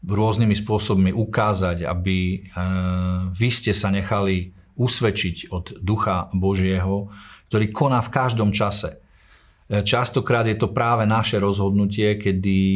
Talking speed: 120 wpm